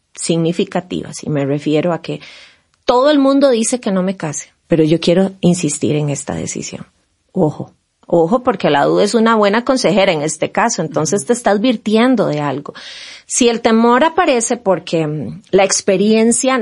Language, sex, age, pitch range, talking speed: English, female, 30-49, 165-235 Hz, 165 wpm